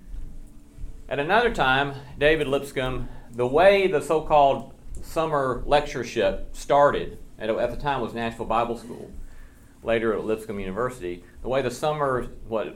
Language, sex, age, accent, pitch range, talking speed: English, male, 40-59, American, 110-140 Hz, 135 wpm